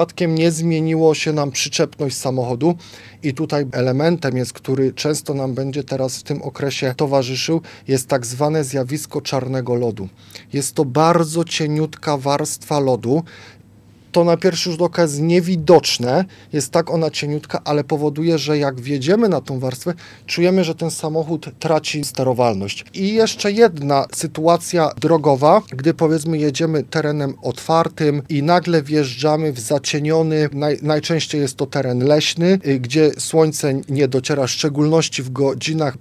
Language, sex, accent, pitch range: Polish, male, native, 135-160 Hz